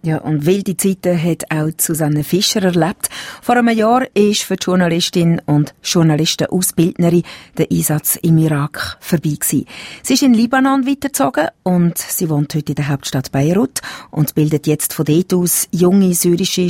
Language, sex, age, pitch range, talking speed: German, female, 40-59, 150-195 Hz, 160 wpm